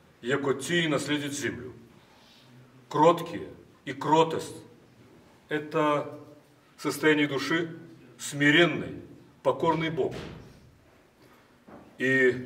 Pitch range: 140-170 Hz